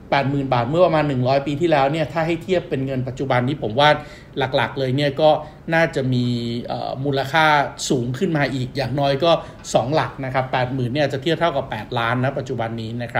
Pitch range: 130-155 Hz